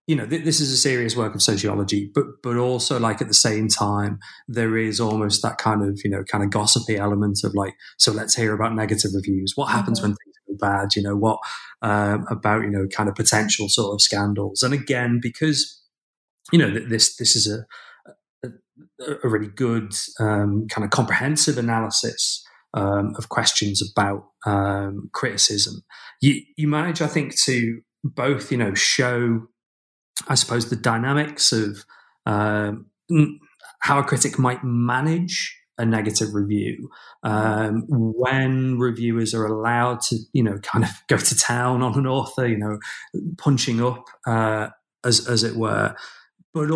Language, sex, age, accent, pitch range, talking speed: English, male, 30-49, British, 105-130 Hz, 165 wpm